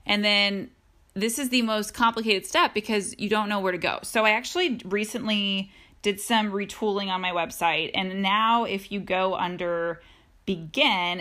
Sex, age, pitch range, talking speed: female, 20-39, 185-230 Hz, 170 wpm